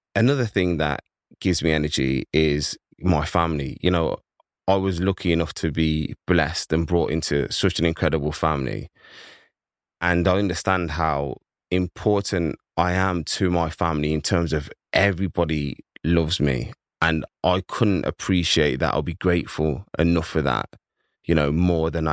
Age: 20-39